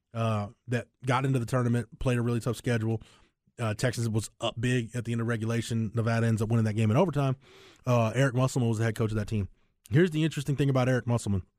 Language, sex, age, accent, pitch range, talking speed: English, male, 20-39, American, 105-125 Hz, 240 wpm